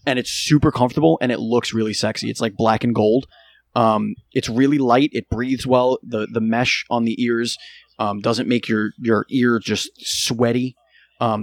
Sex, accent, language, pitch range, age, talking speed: male, American, English, 110-130 Hz, 30-49, 190 wpm